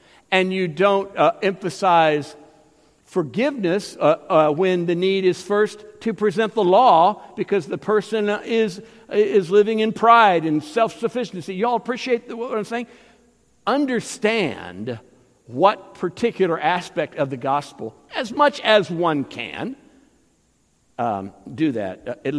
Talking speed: 135 wpm